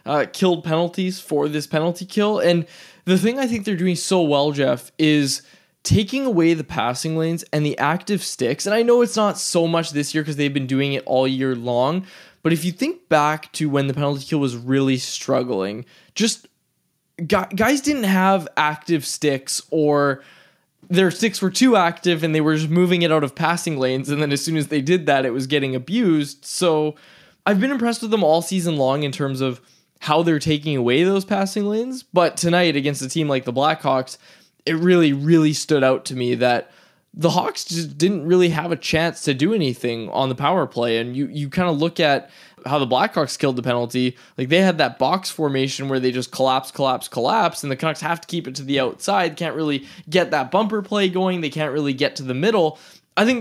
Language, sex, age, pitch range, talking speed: English, male, 20-39, 140-180 Hz, 215 wpm